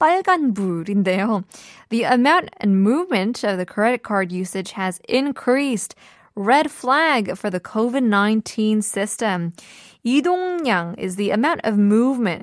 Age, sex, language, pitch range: 20-39, female, Korean, 190-255 Hz